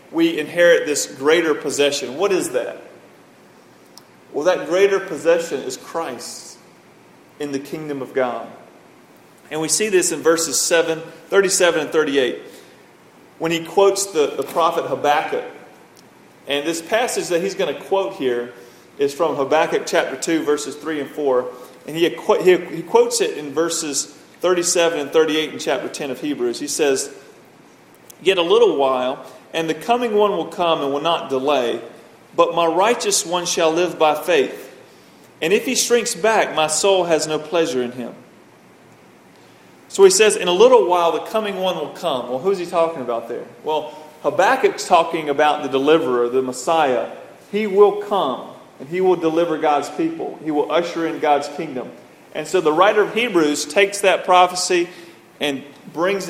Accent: American